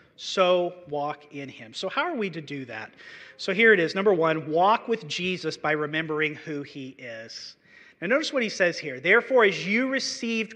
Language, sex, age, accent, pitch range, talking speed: English, male, 40-59, American, 155-230 Hz, 200 wpm